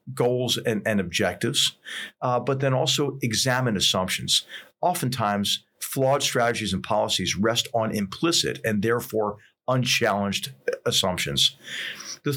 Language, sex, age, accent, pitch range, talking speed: English, male, 50-69, American, 105-140 Hz, 110 wpm